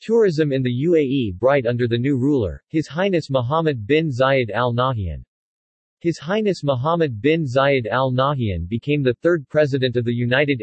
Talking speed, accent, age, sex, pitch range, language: 170 wpm, American, 40-59, male, 125-150 Hz, English